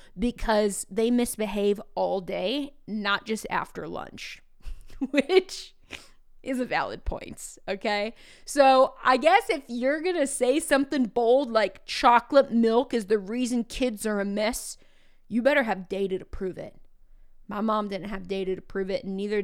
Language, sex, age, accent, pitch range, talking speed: English, female, 20-39, American, 195-245 Hz, 160 wpm